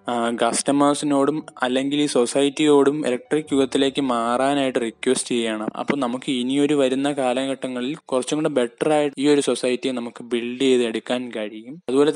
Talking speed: 125 wpm